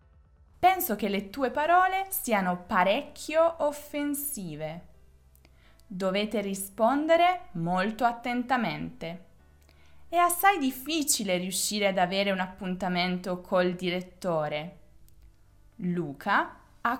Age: 20-39